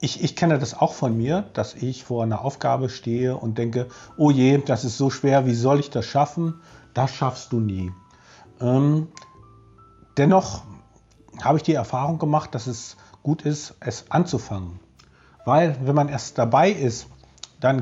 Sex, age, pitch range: male, 40-59, 120-155 Hz